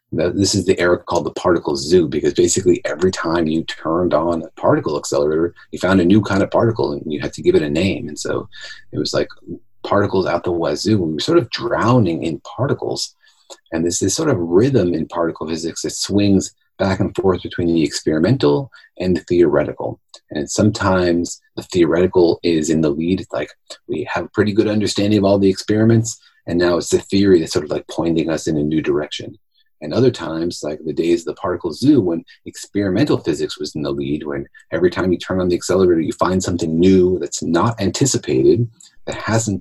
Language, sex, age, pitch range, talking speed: English, male, 30-49, 80-115 Hz, 210 wpm